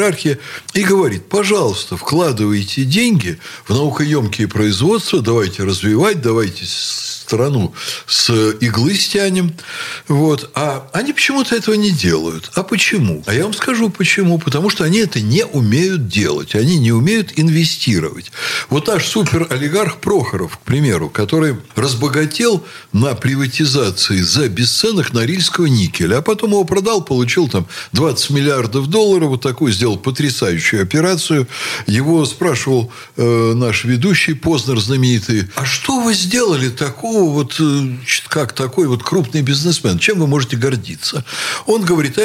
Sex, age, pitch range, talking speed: male, 60-79, 120-185 Hz, 135 wpm